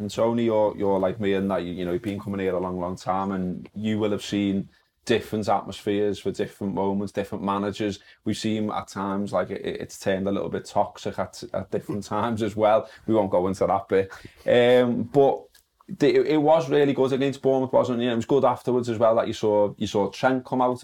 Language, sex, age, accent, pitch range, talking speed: English, male, 20-39, British, 100-120 Hz, 240 wpm